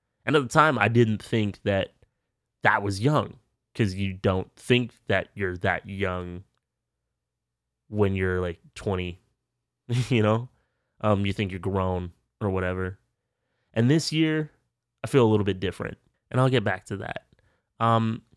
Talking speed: 155 wpm